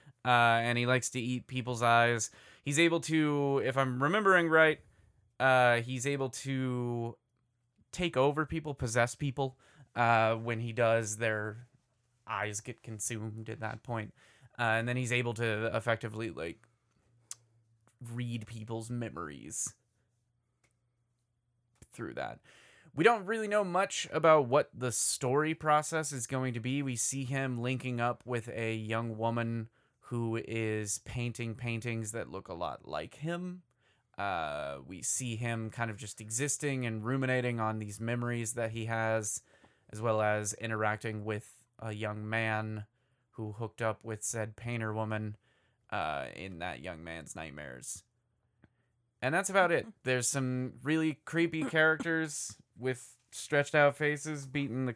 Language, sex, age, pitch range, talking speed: English, male, 20-39, 115-135 Hz, 145 wpm